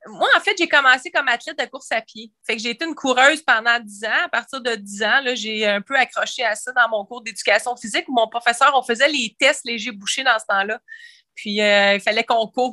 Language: French